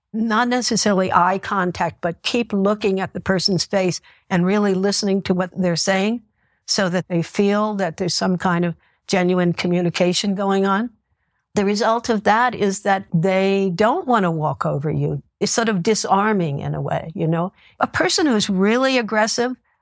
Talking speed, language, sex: 180 wpm, English, female